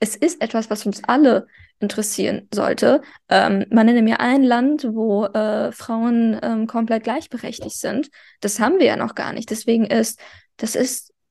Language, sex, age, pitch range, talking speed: German, female, 20-39, 225-255 Hz, 175 wpm